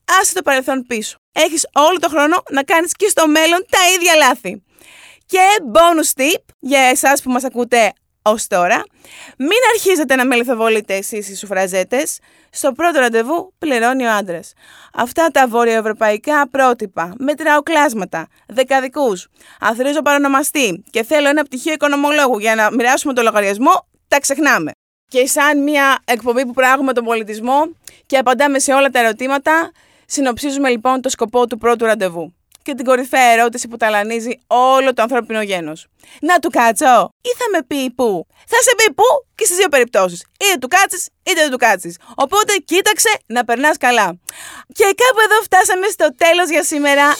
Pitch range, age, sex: 240-340 Hz, 20-39, female